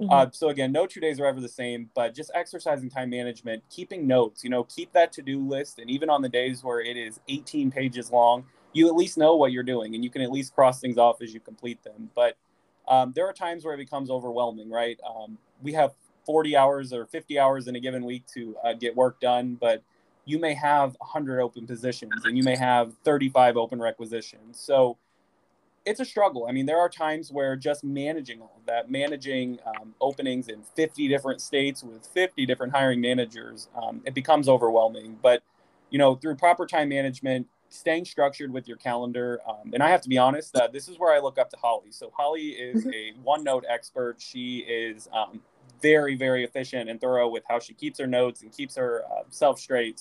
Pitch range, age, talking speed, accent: 120-145 Hz, 20-39, 215 wpm, American